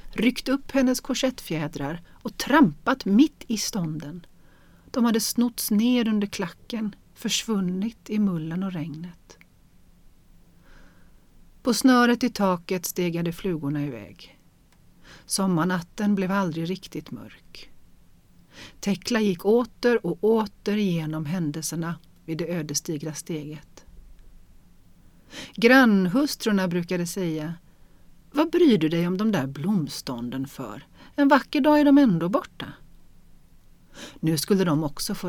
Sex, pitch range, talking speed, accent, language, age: female, 150-210 Hz, 115 wpm, native, Swedish, 40-59